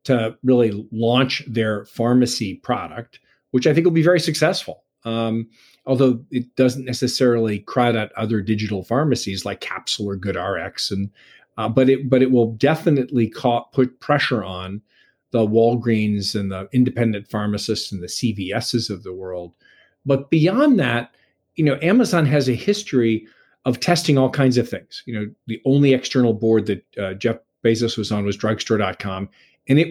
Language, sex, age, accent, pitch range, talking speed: English, male, 40-59, American, 110-135 Hz, 165 wpm